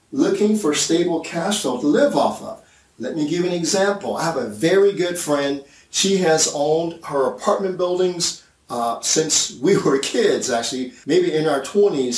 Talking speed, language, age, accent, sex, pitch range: 175 wpm, English, 40-59, American, male, 125-175 Hz